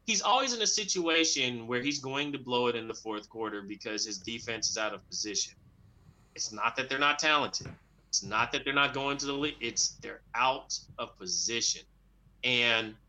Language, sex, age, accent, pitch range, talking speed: English, male, 30-49, American, 115-155 Hz, 195 wpm